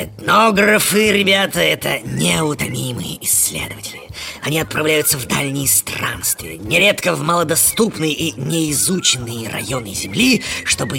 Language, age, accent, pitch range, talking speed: Russian, 20-39, native, 125-185 Hz, 100 wpm